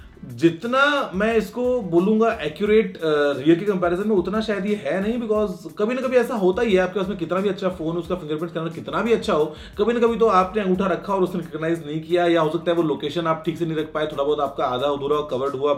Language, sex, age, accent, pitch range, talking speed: Hindi, male, 30-49, native, 155-205 Hz, 255 wpm